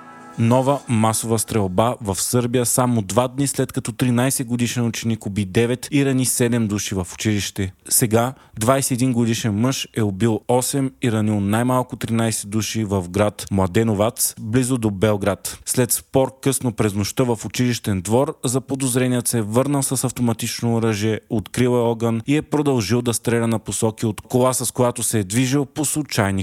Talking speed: 165 wpm